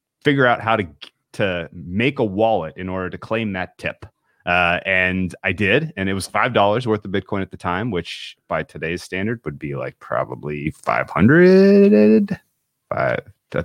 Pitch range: 100-145 Hz